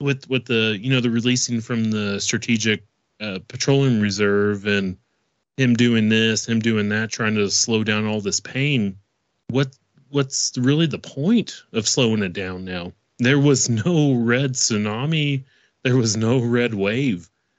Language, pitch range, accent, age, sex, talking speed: English, 110-140 Hz, American, 30-49, male, 160 wpm